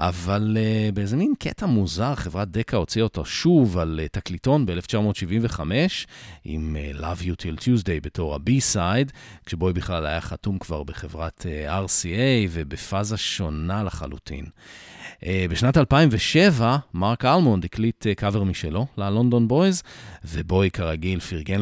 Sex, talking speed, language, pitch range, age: male, 135 wpm, Hebrew, 90-130 Hz, 40-59